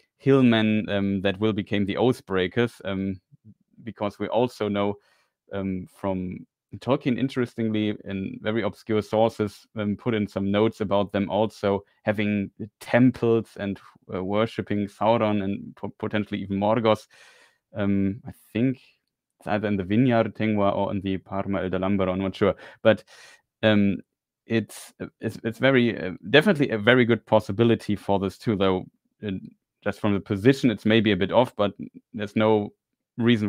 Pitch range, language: 100-115 Hz, English